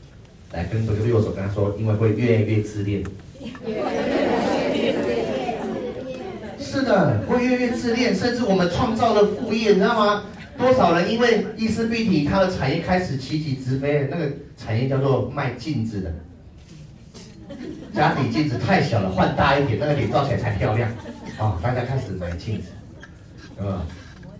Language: Chinese